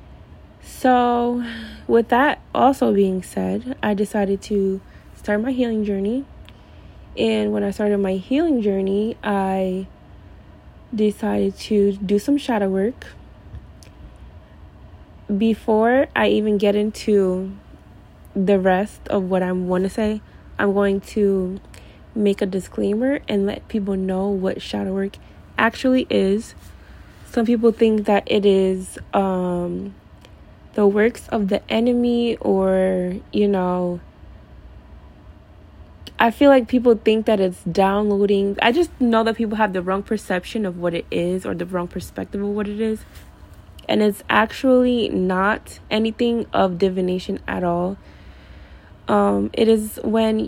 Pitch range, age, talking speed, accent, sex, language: 185-220 Hz, 20-39, 135 wpm, American, female, English